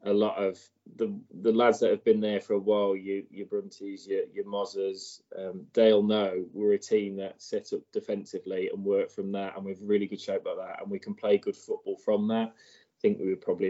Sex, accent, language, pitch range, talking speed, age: male, British, English, 100-115 Hz, 235 wpm, 20-39